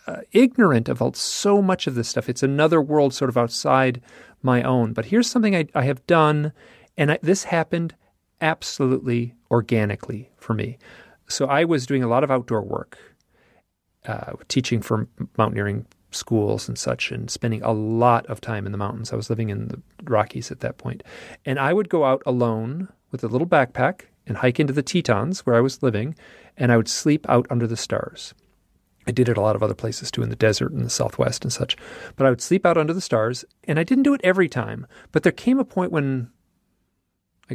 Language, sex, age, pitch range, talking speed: English, male, 40-59, 110-150 Hz, 210 wpm